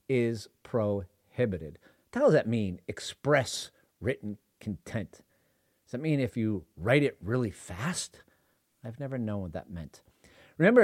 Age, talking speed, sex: 40-59, 140 wpm, male